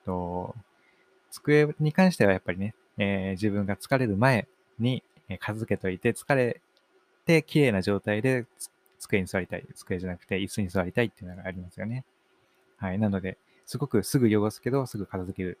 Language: Japanese